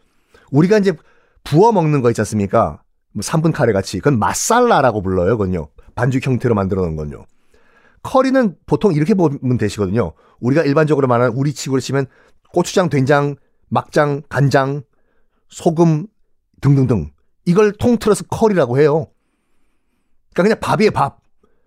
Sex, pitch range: male, 115-180 Hz